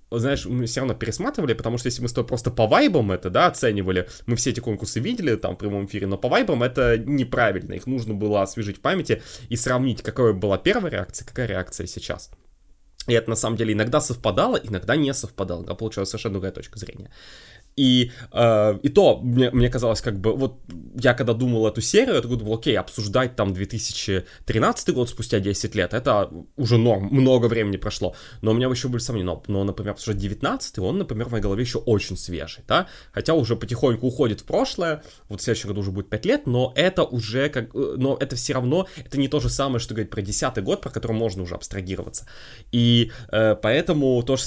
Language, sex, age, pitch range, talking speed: Russian, male, 20-39, 105-130 Hz, 205 wpm